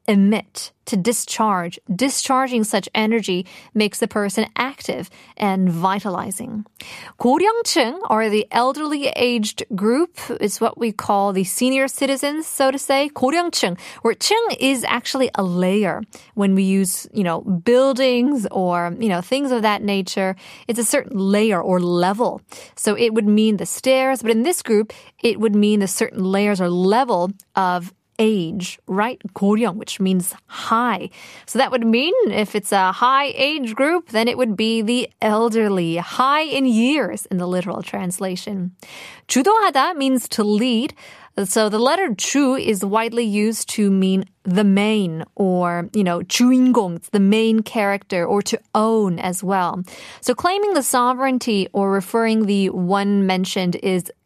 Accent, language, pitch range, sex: American, Korean, 195-250 Hz, female